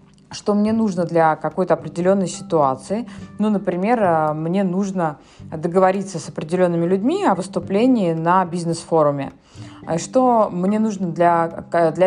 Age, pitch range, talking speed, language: 20-39, 165-200 Hz, 120 wpm, Russian